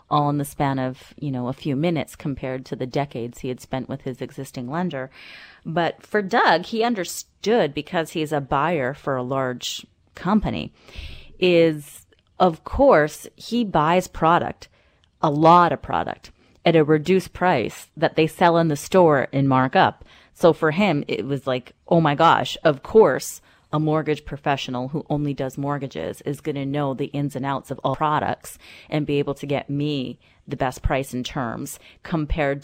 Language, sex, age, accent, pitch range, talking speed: English, female, 30-49, American, 135-165 Hz, 180 wpm